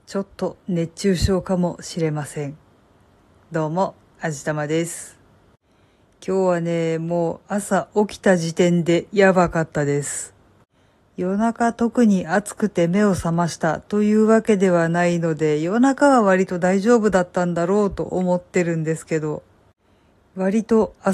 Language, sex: Japanese, female